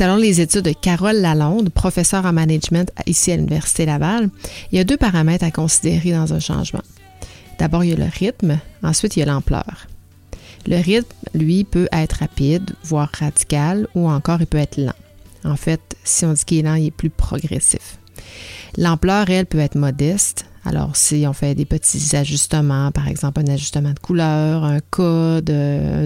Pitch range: 145-175 Hz